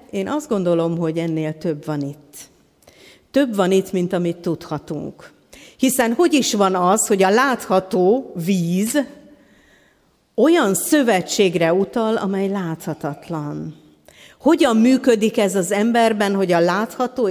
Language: Hungarian